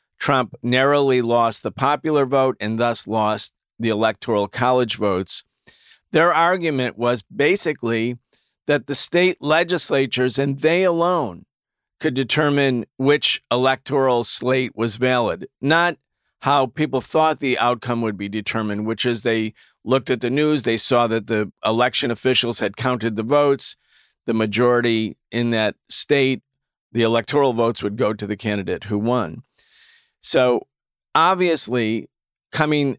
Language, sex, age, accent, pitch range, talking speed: English, male, 40-59, American, 110-140 Hz, 135 wpm